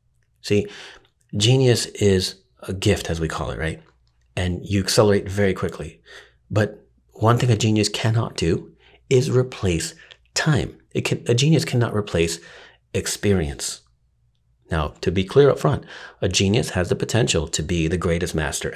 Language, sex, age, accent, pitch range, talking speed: English, male, 40-59, American, 85-115 Hz, 145 wpm